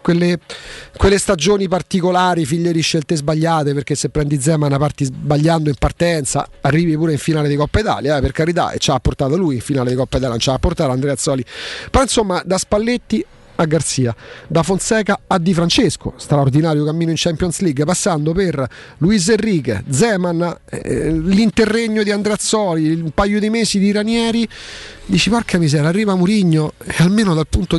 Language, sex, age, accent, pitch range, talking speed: Italian, male, 40-59, native, 150-185 Hz, 180 wpm